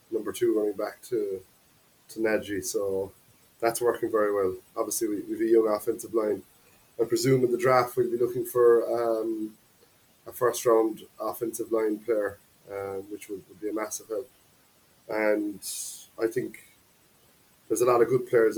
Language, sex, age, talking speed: English, male, 20-39, 170 wpm